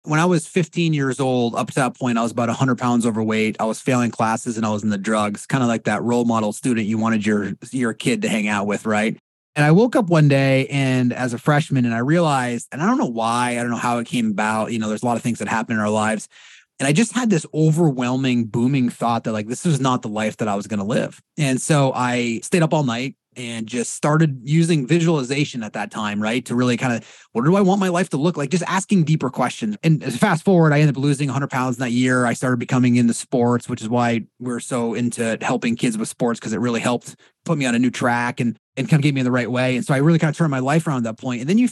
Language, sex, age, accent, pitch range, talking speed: English, male, 30-49, American, 115-150 Hz, 280 wpm